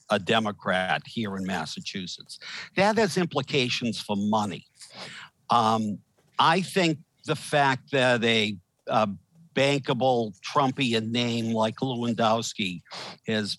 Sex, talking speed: male, 105 wpm